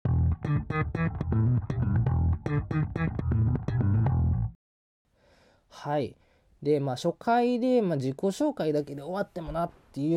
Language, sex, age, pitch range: Japanese, male, 20-39, 110-155 Hz